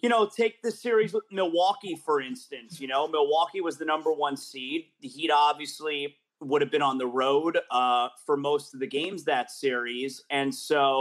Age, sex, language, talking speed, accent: 30-49, male, English, 195 wpm, American